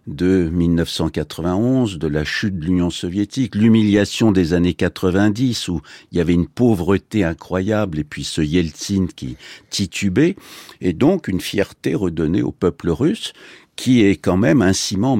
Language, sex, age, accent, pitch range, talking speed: French, male, 60-79, French, 85-105 Hz, 155 wpm